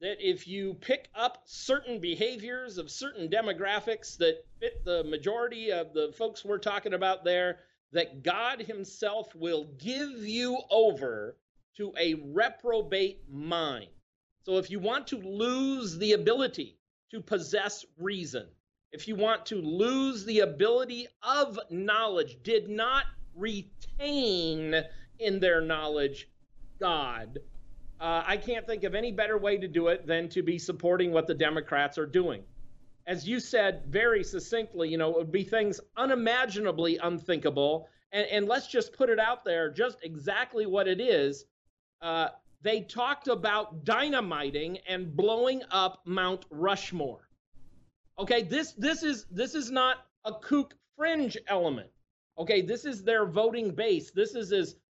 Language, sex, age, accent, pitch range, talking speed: English, male, 40-59, American, 170-240 Hz, 150 wpm